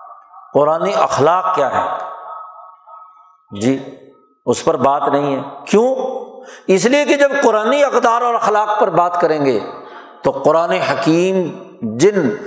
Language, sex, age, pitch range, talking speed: Urdu, male, 60-79, 175-240 Hz, 130 wpm